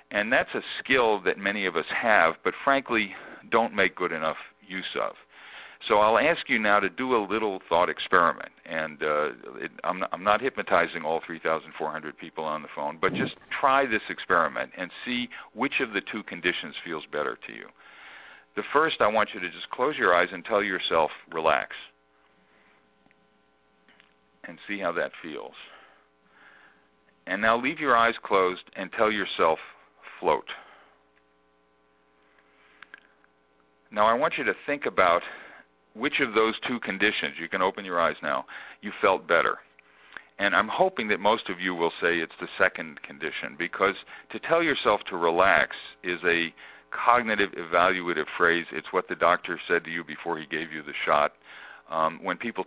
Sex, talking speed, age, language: male, 165 wpm, 50-69, English